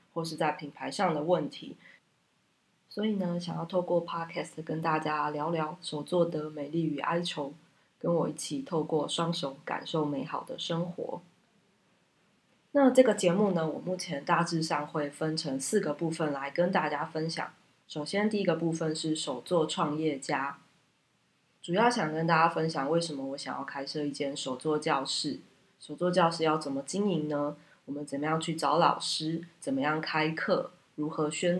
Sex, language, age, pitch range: female, Chinese, 20-39, 150-175 Hz